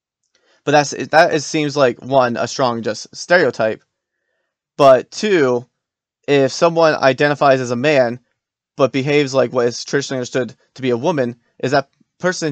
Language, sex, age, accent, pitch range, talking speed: English, male, 20-39, American, 125-155 Hz, 150 wpm